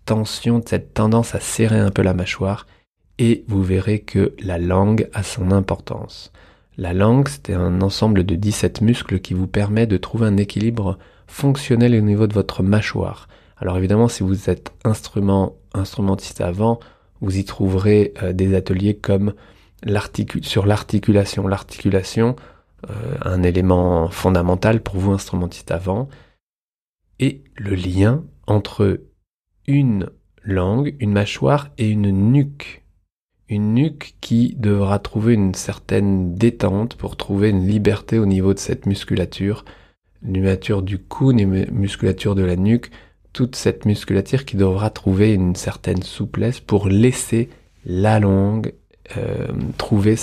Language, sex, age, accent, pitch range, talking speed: French, male, 20-39, French, 95-110 Hz, 140 wpm